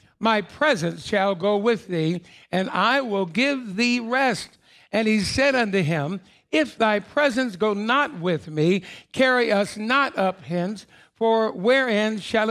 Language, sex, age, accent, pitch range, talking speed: English, male, 60-79, American, 180-225 Hz, 155 wpm